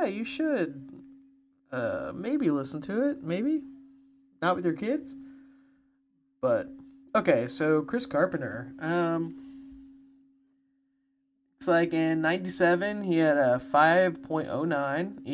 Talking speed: 100 wpm